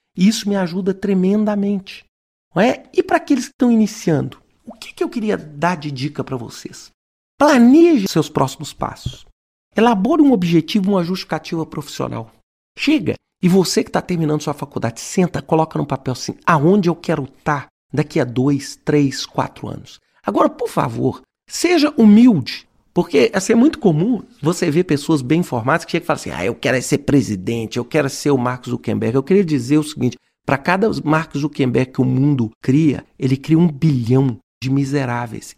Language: Portuguese